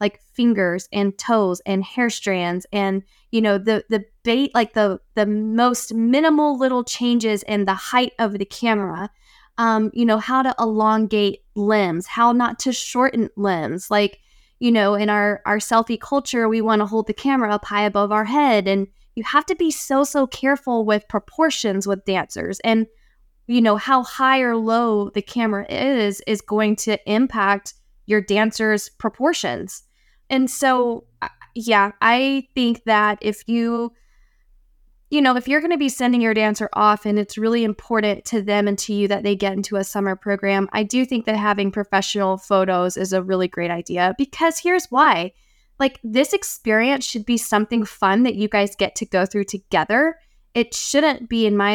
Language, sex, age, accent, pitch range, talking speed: English, female, 10-29, American, 200-240 Hz, 180 wpm